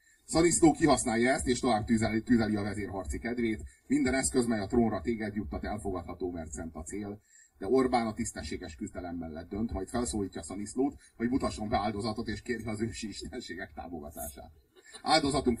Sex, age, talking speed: male, 30-49, 165 wpm